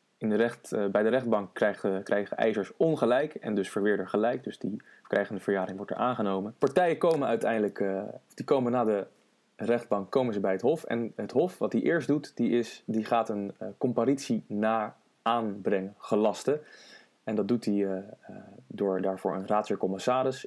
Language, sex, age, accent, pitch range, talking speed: English, male, 20-39, Dutch, 100-120 Hz, 190 wpm